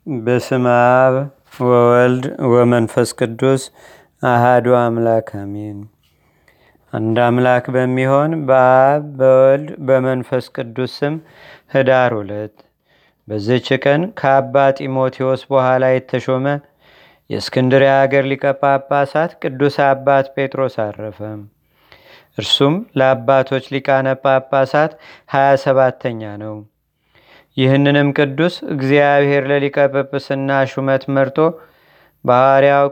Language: Amharic